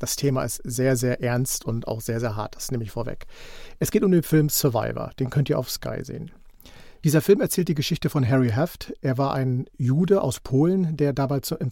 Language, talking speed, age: German, 225 wpm, 50-69